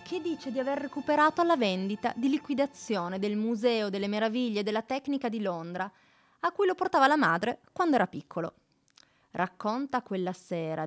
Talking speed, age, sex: 160 wpm, 30-49, female